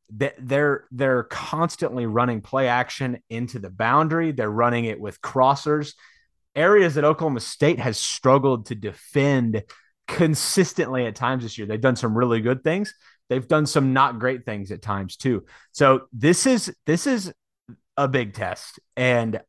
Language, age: English, 30-49